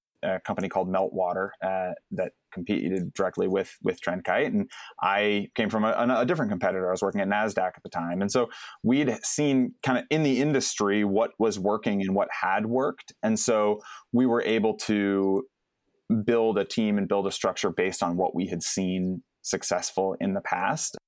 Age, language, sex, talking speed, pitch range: 20-39, English, male, 190 wpm, 100-120 Hz